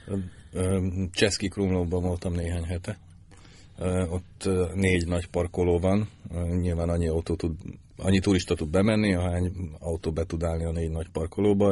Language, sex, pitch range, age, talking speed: Hungarian, male, 85-100 Hz, 40-59, 140 wpm